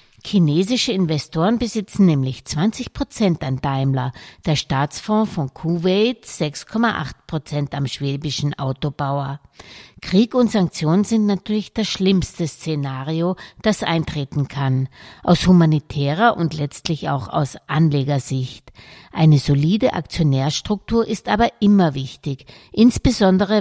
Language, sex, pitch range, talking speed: German, female, 145-195 Hz, 105 wpm